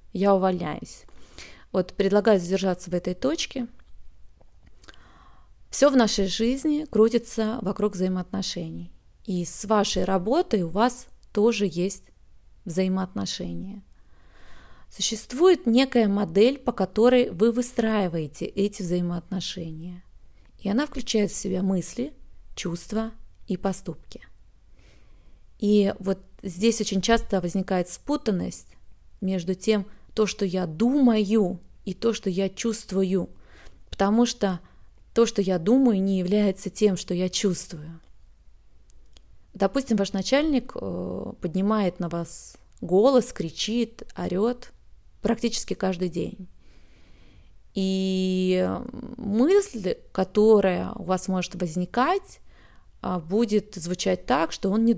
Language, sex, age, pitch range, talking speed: Russian, female, 30-49, 180-220 Hz, 105 wpm